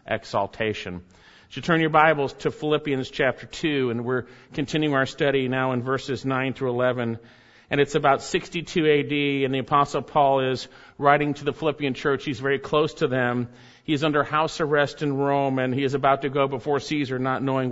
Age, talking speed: 50-69, 195 wpm